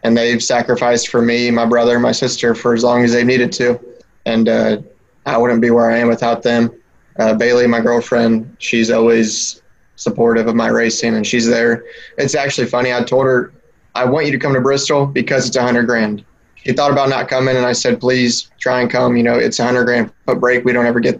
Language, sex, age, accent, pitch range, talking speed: English, male, 20-39, American, 115-125 Hz, 225 wpm